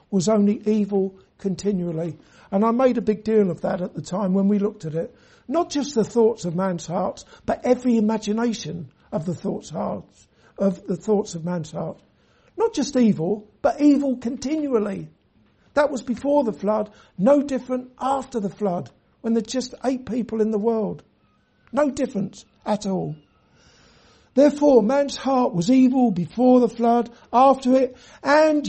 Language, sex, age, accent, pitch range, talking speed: English, male, 60-79, British, 190-245 Hz, 165 wpm